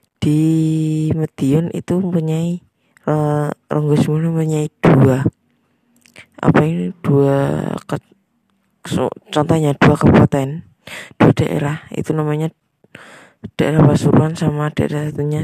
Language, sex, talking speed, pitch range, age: Indonesian, female, 100 wpm, 140-160 Hz, 20-39